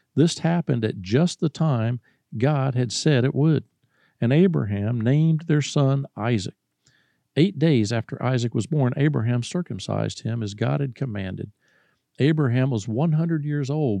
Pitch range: 110-150 Hz